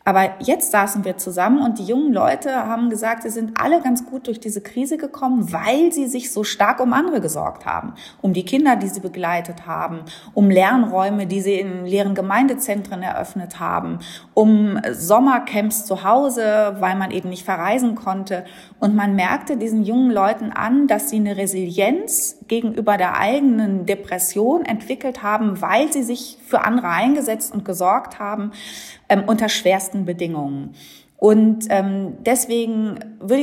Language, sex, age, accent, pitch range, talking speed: German, female, 30-49, German, 195-245 Hz, 160 wpm